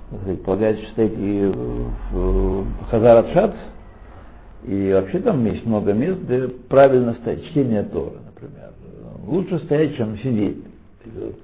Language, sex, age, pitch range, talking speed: Russian, male, 60-79, 95-150 Hz, 125 wpm